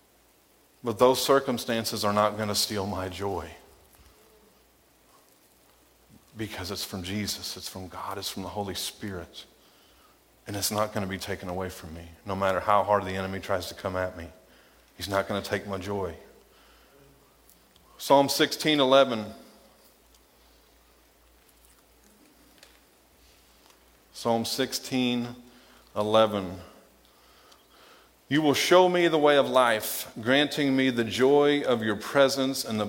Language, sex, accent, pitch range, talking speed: English, male, American, 100-130 Hz, 125 wpm